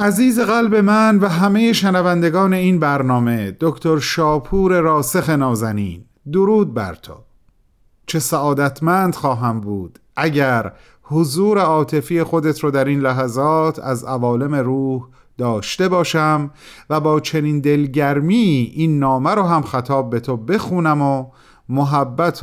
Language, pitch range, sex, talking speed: Persian, 125-170 Hz, male, 125 wpm